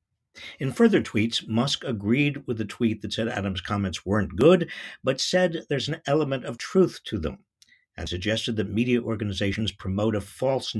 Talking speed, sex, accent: 170 wpm, male, American